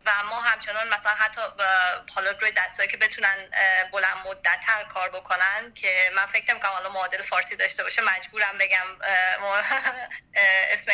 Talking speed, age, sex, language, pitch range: 155 wpm, 20-39, female, Persian, 190-230 Hz